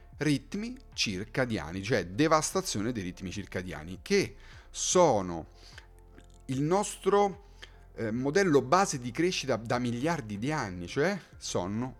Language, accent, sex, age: Italian, native, male, 40-59